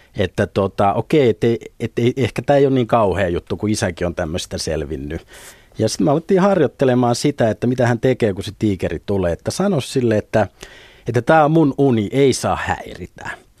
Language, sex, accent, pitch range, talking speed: Finnish, male, native, 105-135 Hz, 180 wpm